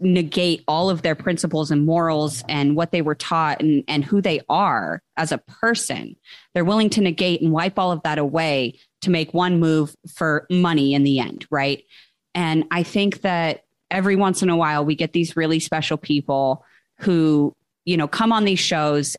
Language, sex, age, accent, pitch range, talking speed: English, female, 30-49, American, 155-185 Hz, 195 wpm